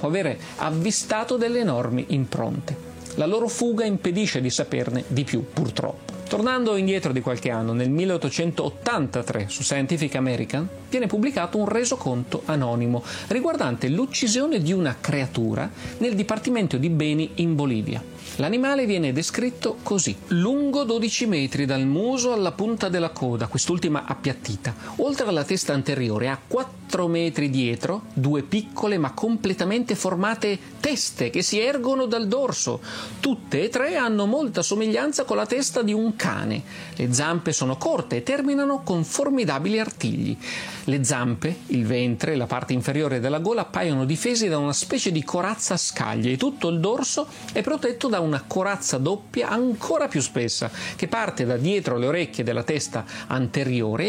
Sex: male